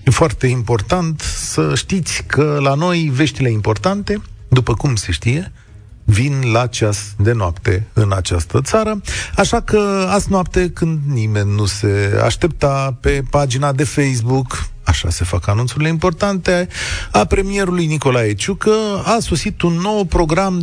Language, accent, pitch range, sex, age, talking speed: Romanian, native, 110-165 Hz, male, 40-59, 140 wpm